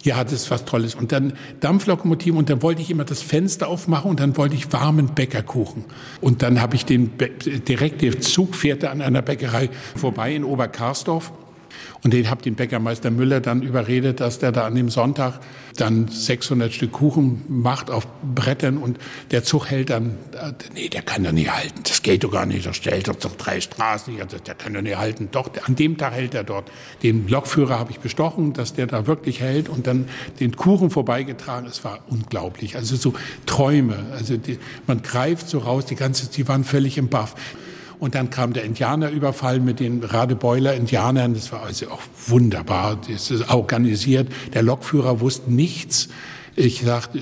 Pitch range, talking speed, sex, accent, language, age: 120-140 Hz, 190 wpm, male, German, German, 60-79